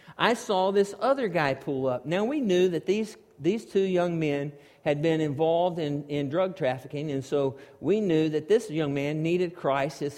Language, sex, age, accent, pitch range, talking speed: English, male, 50-69, American, 175-245 Hz, 200 wpm